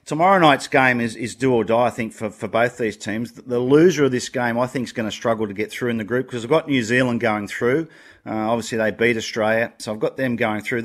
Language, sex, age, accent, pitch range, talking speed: English, male, 40-59, Australian, 110-130 Hz, 275 wpm